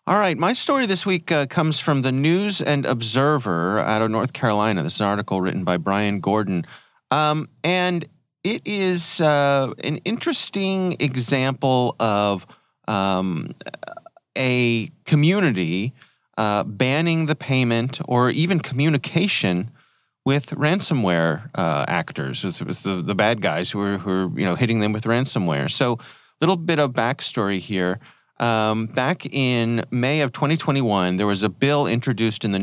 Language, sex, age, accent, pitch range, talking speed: English, male, 30-49, American, 100-145 Hz, 155 wpm